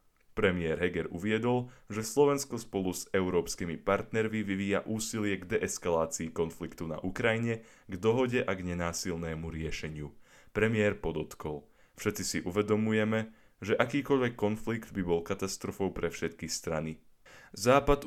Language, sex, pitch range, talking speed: Slovak, male, 85-110 Hz, 125 wpm